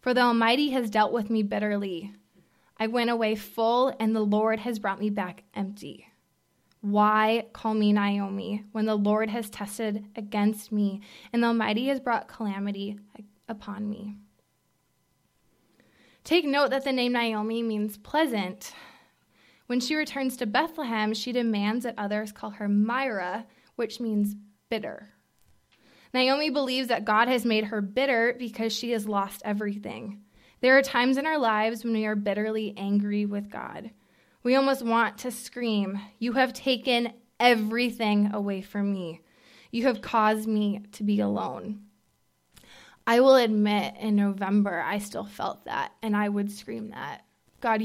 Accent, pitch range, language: American, 205-240 Hz, English